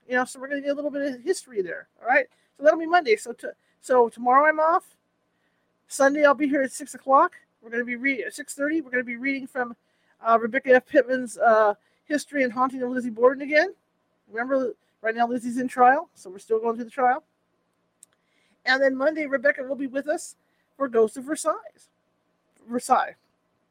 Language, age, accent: English, 40-59, American